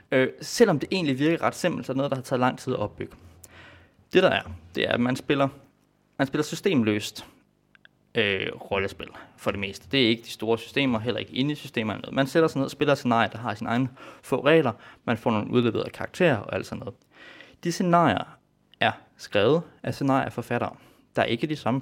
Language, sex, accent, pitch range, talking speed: Danish, male, native, 115-150 Hz, 210 wpm